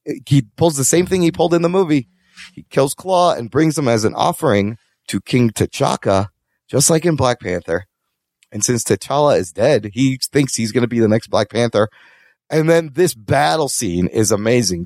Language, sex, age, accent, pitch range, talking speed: English, male, 30-49, American, 115-185 Hz, 200 wpm